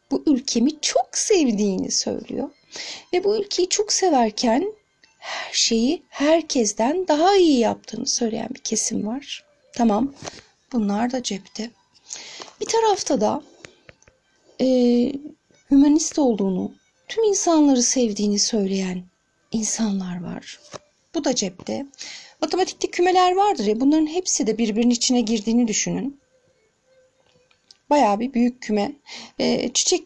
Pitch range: 225-310 Hz